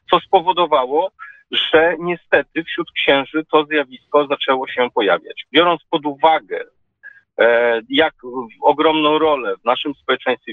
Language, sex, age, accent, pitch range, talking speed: Polish, male, 40-59, native, 145-195 Hz, 115 wpm